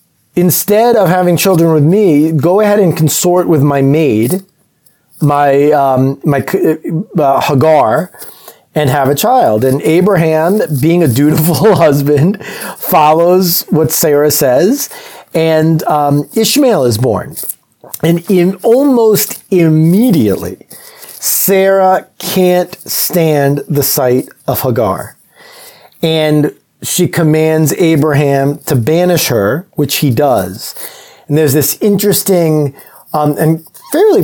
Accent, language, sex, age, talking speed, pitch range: American, English, male, 30-49, 115 wpm, 140-180 Hz